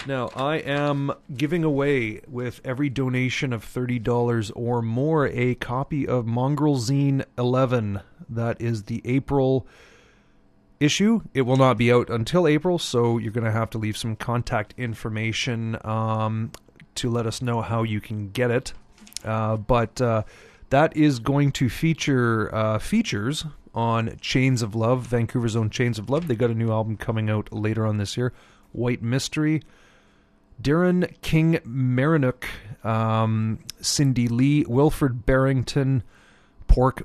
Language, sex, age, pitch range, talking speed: English, male, 30-49, 110-135 Hz, 145 wpm